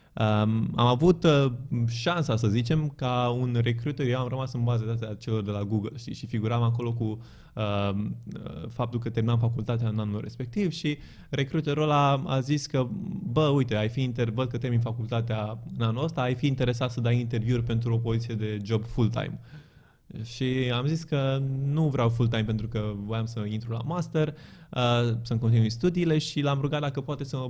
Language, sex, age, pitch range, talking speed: Romanian, male, 20-39, 110-130 Hz, 190 wpm